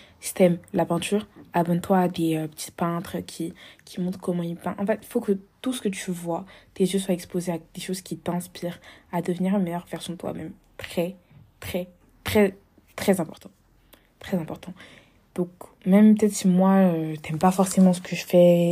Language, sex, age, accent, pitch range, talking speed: French, female, 20-39, French, 170-200 Hz, 190 wpm